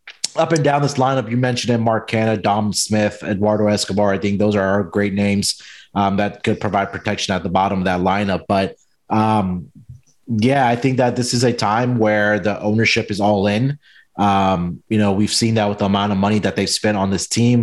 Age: 30-49